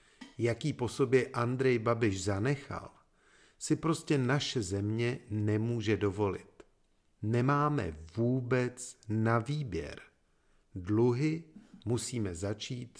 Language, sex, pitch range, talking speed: Czech, male, 100-140 Hz, 90 wpm